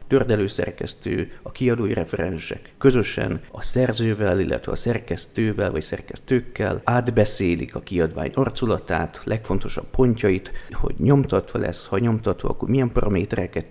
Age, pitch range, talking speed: 30-49, 90-120 Hz, 115 wpm